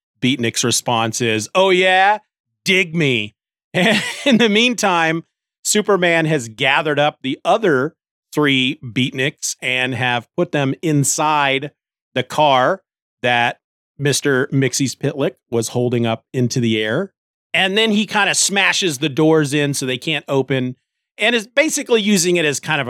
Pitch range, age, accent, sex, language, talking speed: 120-165 Hz, 40-59, American, male, English, 145 wpm